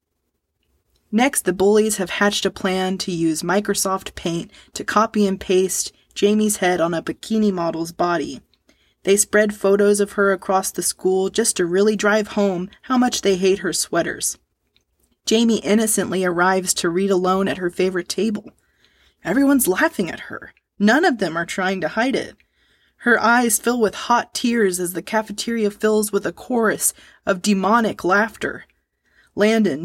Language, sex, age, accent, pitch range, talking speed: English, female, 20-39, American, 185-220 Hz, 160 wpm